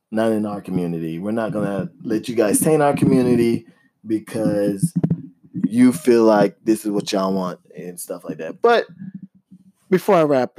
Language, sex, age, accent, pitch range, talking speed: English, male, 20-39, American, 110-145 Hz, 175 wpm